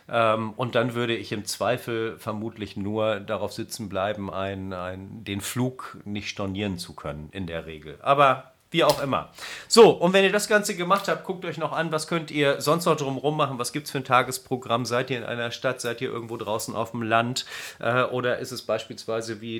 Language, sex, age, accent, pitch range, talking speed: German, male, 40-59, German, 105-120 Hz, 215 wpm